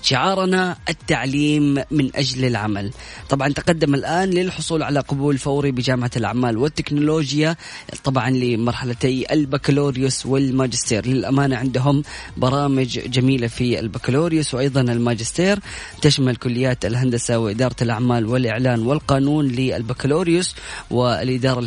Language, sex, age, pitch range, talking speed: Arabic, female, 20-39, 130-155 Hz, 100 wpm